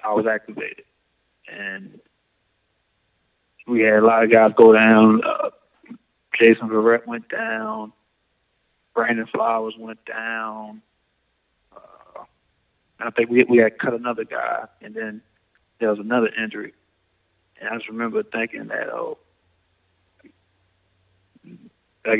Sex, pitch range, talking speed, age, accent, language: male, 110-120 Hz, 120 wpm, 30-49, American, English